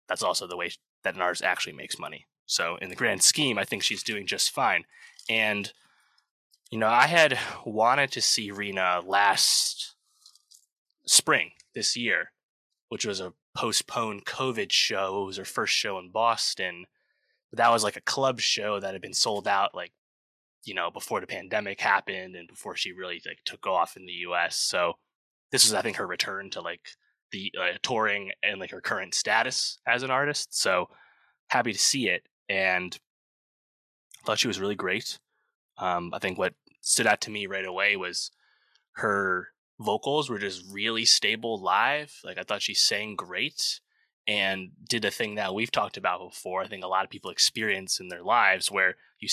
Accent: American